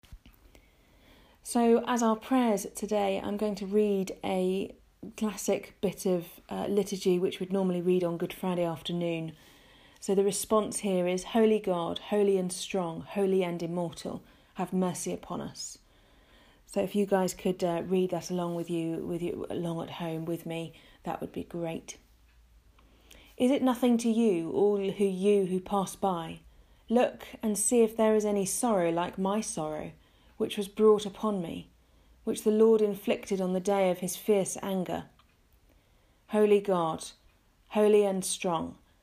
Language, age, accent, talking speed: English, 30-49, British, 160 wpm